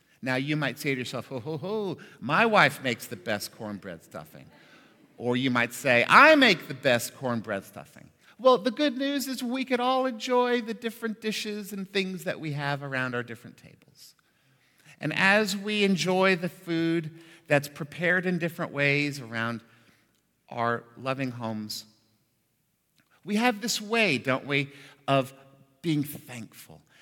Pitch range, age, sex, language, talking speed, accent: 130-205 Hz, 50-69, male, English, 150 wpm, American